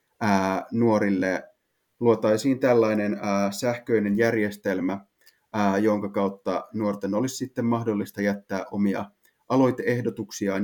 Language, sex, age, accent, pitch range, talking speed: Finnish, male, 30-49, native, 100-120 Hz, 80 wpm